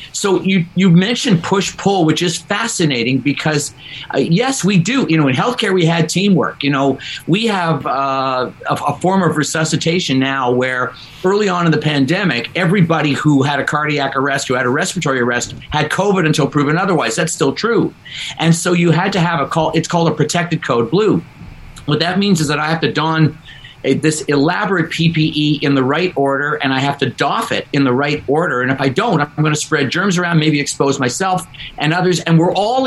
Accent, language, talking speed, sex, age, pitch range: American, English, 210 wpm, male, 50-69, 145-180 Hz